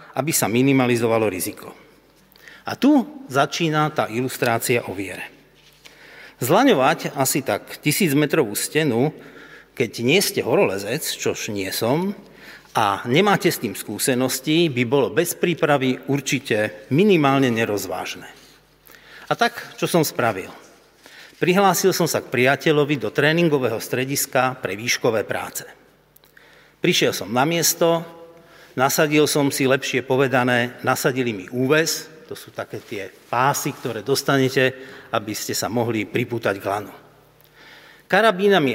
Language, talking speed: Slovak, 120 wpm